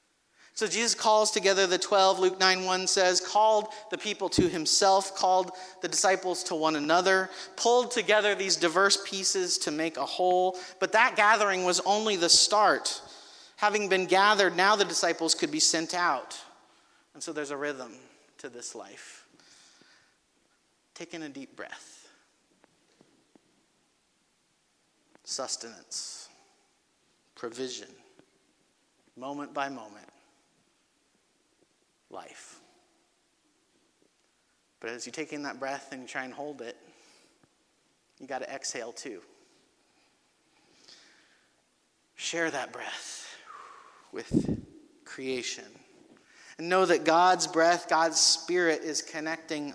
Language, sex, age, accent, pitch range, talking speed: English, male, 40-59, American, 160-215 Hz, 115 wpm